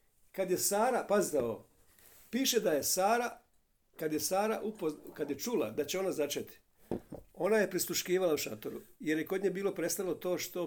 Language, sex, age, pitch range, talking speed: Croatian, male, 50-69, 145-200 Hz, 180 wpm